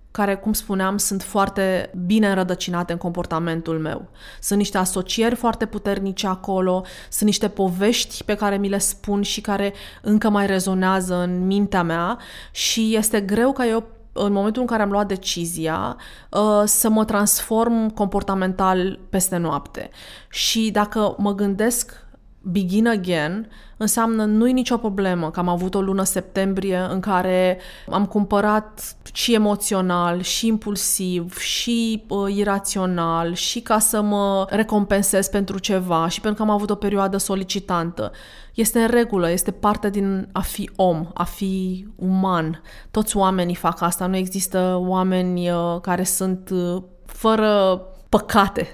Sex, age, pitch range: female, 20-39, 185-210 Hz